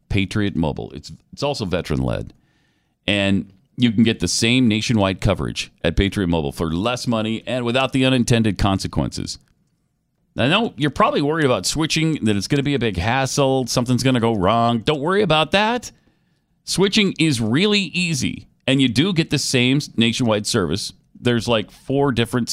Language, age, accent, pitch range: English, 40-59, American, 95-130 Hz